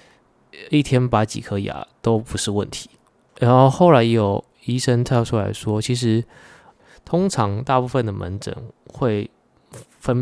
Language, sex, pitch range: Chinese, male, 100-120 Hz